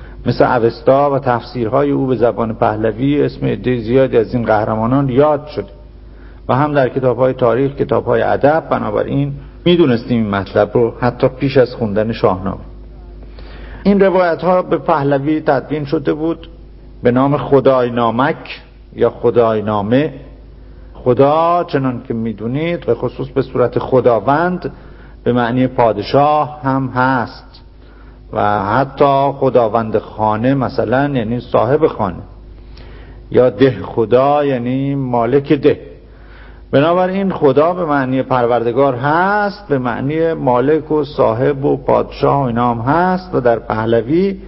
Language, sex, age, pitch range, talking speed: English, male, 50-69, 120-155 Hz, 130 wpm